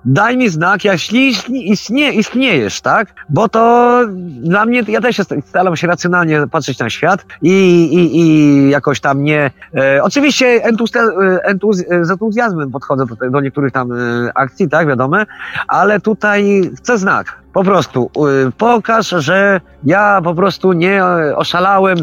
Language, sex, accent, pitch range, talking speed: Polish, male, native, 145-220 Hz, 145 wpm